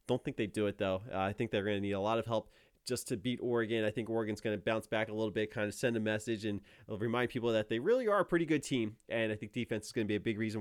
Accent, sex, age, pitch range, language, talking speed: American, male, 30-49, 110-140 Hz, English, 330 wpm